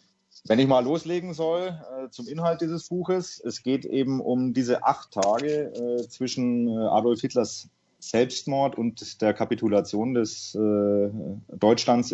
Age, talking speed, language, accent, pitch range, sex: 30-49, 125 wpm, German, German, 110-130 Hz, male